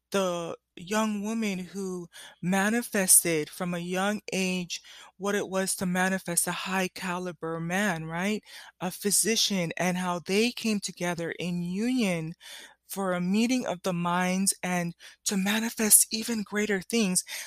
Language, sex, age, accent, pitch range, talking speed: English, female, 20-39, American, 175-205 Hz, 135 wpm